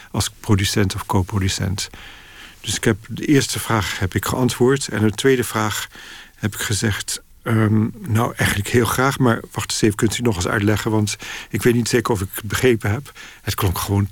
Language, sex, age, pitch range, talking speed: Dutch, male, 50-69, 105-115 Hz, 200 wpm